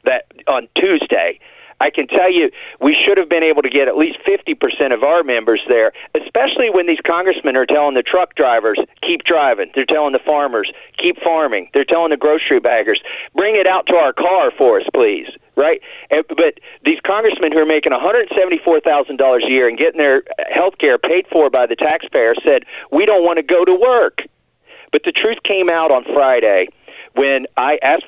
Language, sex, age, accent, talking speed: English, male, 50-69, American, 190 wpm